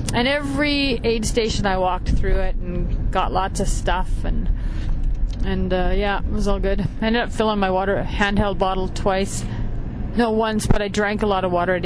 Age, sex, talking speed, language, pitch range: 30-49, female, 205 wpm, English, 195-245 Hz